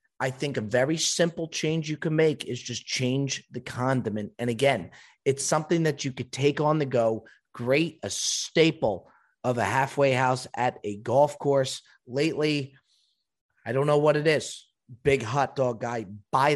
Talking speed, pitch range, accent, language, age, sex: 175 wpm, 120-145 Hz, American, English, 30-49, male